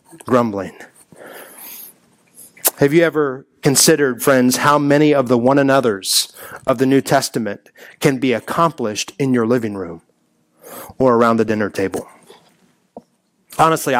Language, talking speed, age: English, 125 wpm, 30-49